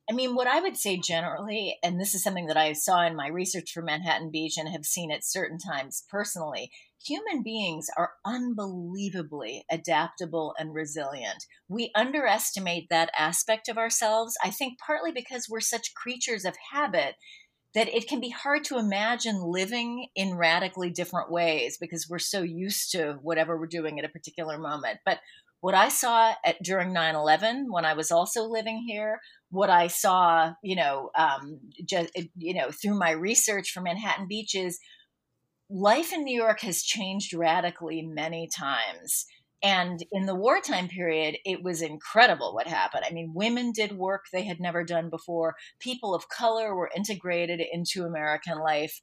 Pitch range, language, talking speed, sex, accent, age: 165-215 Hz, English, 170 wpm, female, American, 40-59